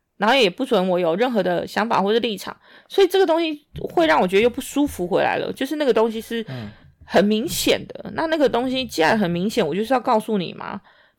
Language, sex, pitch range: Chinese, female, 195-270 Hz